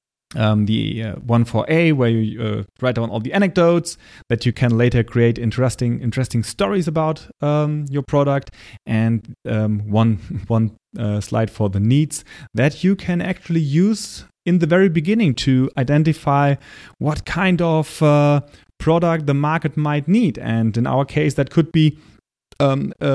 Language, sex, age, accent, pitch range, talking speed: English, male, 30-49, German, 120-160 Hz, 165 wpm